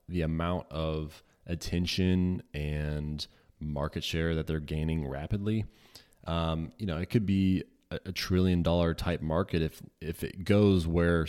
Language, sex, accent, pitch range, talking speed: English, male, American, 75-90 Hz, 150 wpm